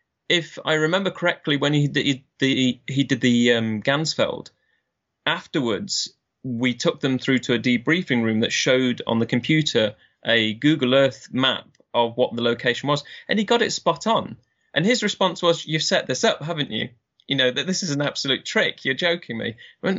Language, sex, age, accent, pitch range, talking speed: English, male, 20-39, British, 115-155 Hz, 190 wpm